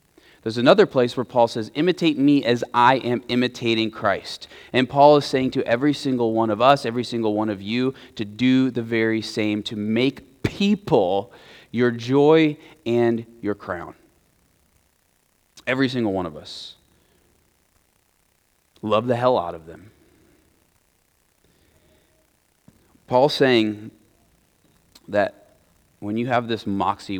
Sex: male